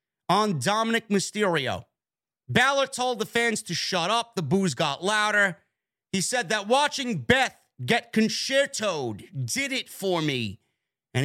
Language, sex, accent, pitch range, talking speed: English, male, American, 155-210 Hz, 140 wpm